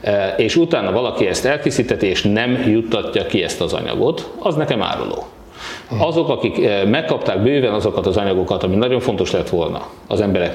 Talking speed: 165 wpm